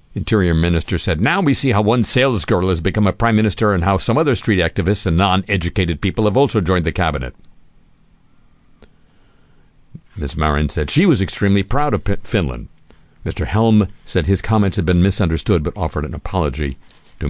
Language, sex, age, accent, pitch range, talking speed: English, male, 50-69, American, 80-110 Hz, 175 wpm